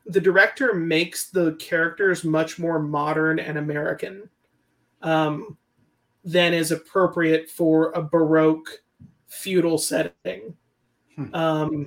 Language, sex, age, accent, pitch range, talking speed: English, male, 30-49, American, 155-175 Hz, 100 wpm